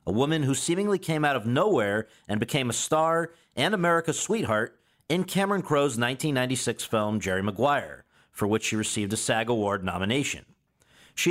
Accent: American